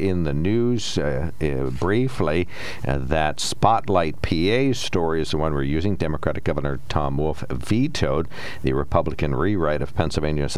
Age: 60-79